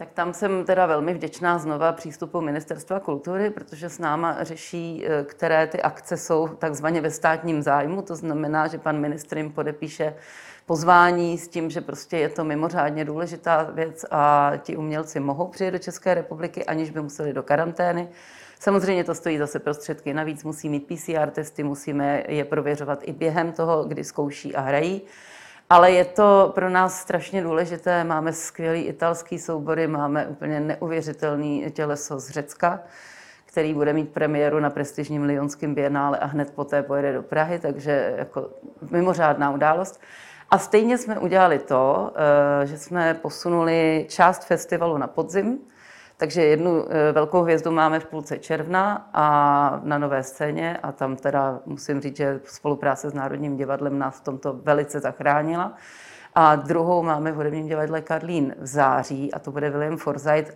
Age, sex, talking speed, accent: 30-49, female, 160 wpm, native